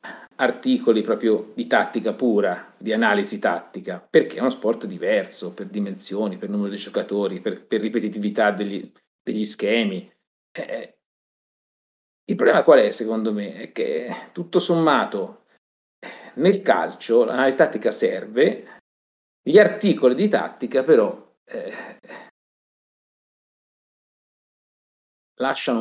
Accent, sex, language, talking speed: native, male, Italian, 110 wpm